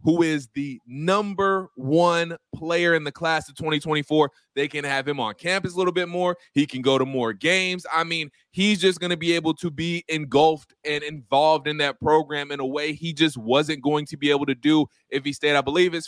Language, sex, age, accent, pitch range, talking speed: English, male, 20-39, American, 145-170 Hz, 230 wpm